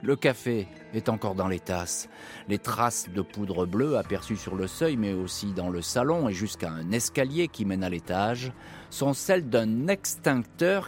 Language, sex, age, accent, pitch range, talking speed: French, male, 40-59, French, 95-125 Hz, 180 wpm